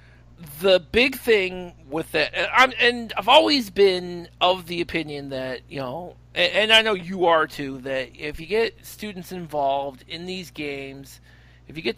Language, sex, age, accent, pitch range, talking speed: English, male, 40-59, American, 145-215 Hz, 175 wpm